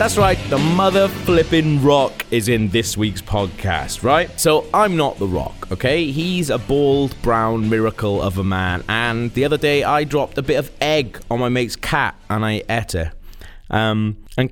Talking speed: 190 wpm